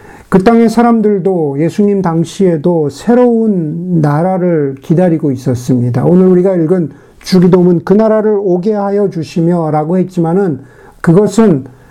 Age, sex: 50-69, male